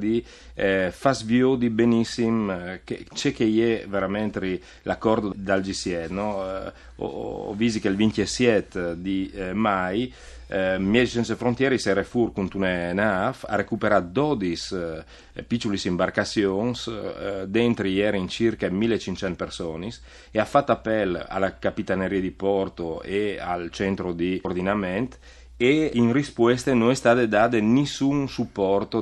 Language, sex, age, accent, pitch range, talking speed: Italian, male, 30-49, native, 95-115 Hz, 135 wpm